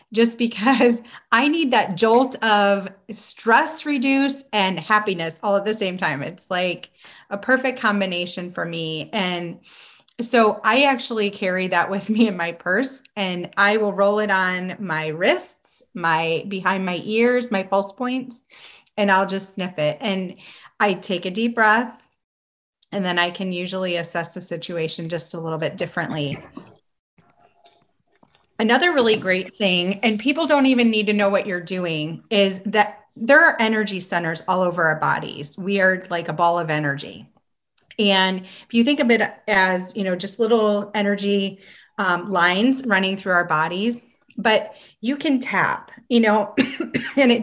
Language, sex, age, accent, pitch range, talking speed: English, female, 30-49, American, 180-230 Hz, 165 wpm